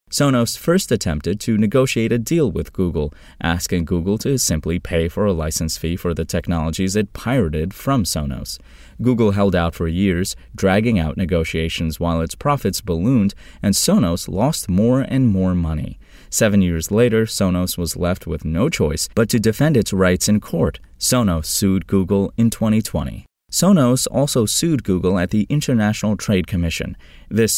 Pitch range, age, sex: 85-110 Hz, 20-39, male